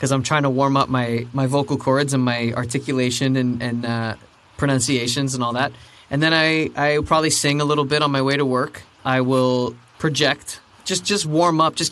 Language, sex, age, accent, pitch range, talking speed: English, male, 20-39, American, 125-150 Hz, 210 wpm